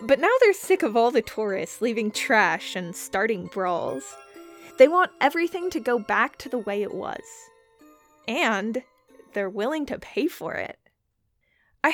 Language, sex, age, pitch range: English, female, 10-29, 225-340 Hz